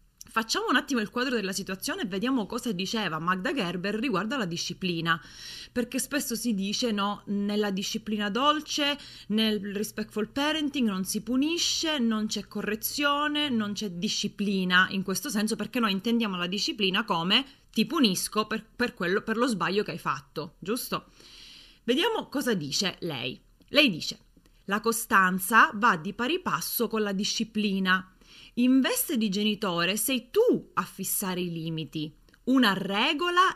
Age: 30-49